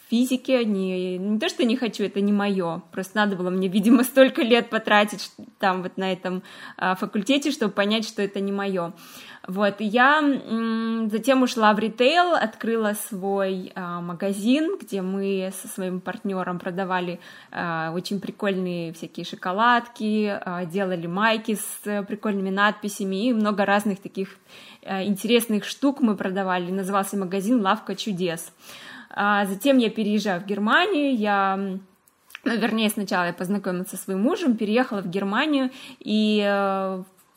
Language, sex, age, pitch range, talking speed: Russian, female, 20-39, 195-230 Hz, 135 wpm